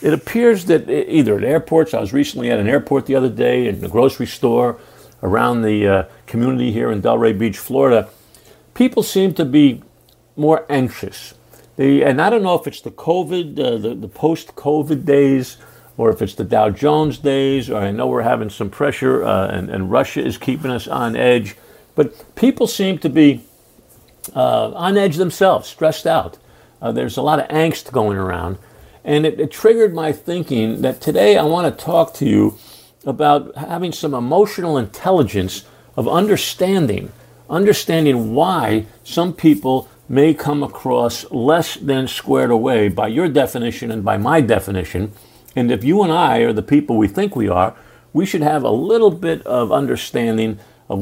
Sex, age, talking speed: male, 50-69, 175 wpm